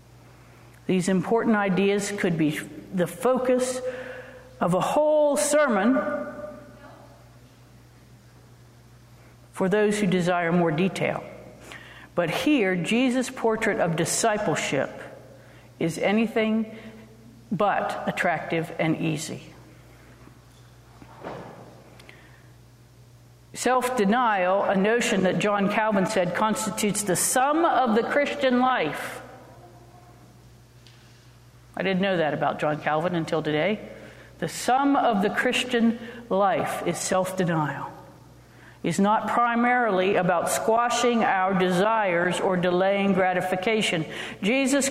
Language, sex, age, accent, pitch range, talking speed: English, female, 50-69, American, 145-230 Hz, 95 wpm